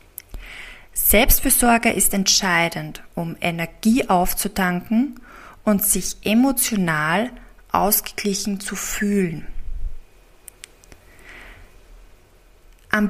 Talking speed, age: 60 wpm, 20-39